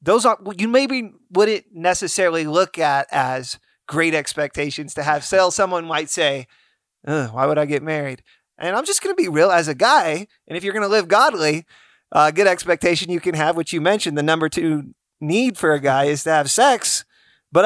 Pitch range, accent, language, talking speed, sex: 155-205 Hz, American, English, 205 wpm, male